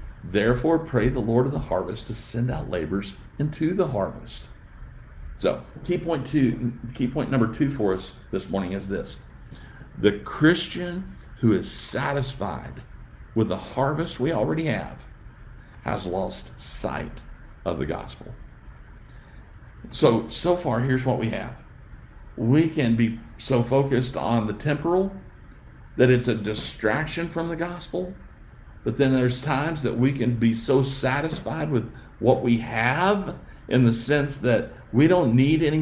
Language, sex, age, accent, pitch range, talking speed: English, male, 50-69, American, 115-150 Hz, 145 wpm